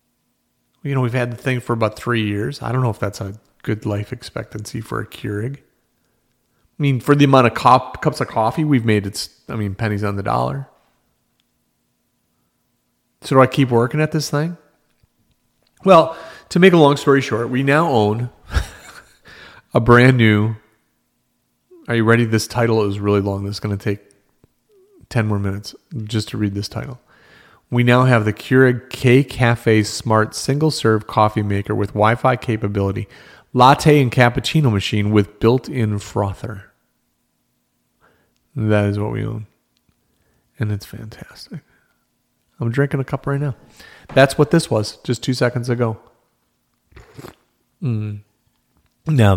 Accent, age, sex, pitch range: American, 40-59, male, 105-130 Hz